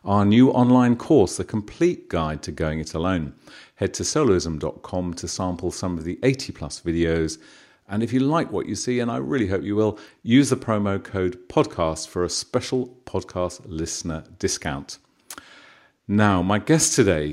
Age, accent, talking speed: 40-59, British, 170 wpm